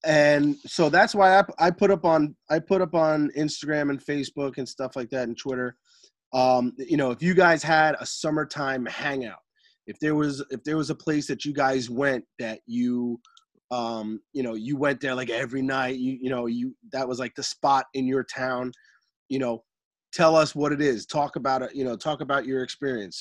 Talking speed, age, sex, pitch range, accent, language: 215 wpm, 30-49, male, 130-165 Hz, American, English